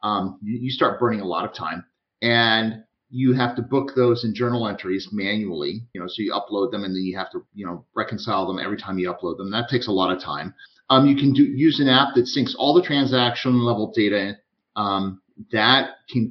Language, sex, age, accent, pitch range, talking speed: English, male, 40-59, American, 100-130 Hz, 225 wpm